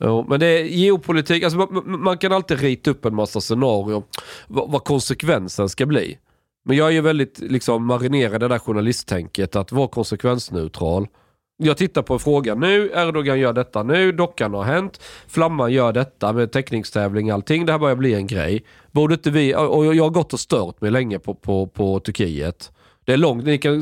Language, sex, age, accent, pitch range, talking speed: Swedish, male, 40-59, native, 105-155 Hz, 195 wpm